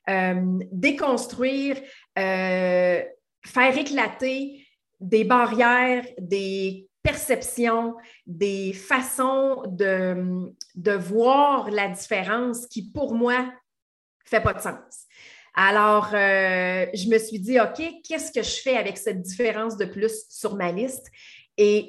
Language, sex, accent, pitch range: French, female, Canadian, 195-245 Hz